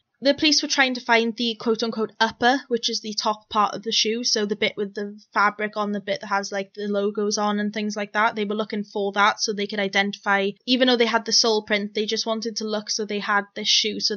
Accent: British